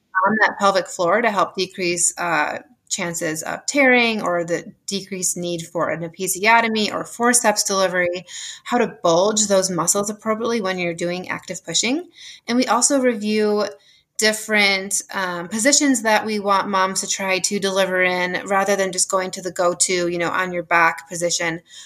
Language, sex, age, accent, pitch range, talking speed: English, female, 20-39, American, 180-220 Hz, 170 wpm